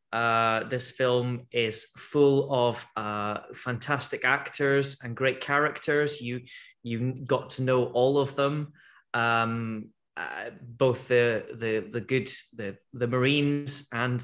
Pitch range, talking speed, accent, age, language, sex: 110-135 Hz, 130 wpm, British, 20-39, English, male